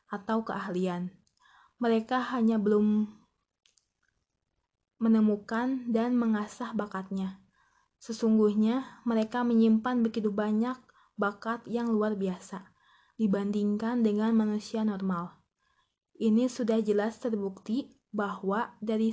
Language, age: Indonesian, 20-39